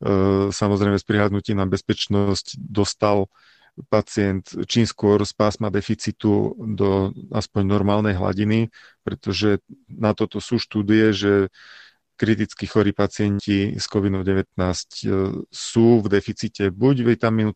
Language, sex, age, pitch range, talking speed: Slovak, male, 40-59, 100-115 Hz, 110 wpm